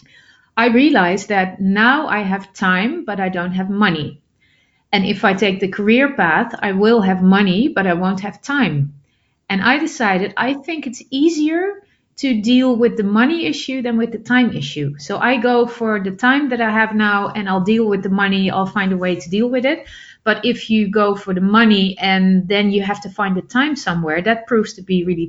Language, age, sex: English, 30-49, female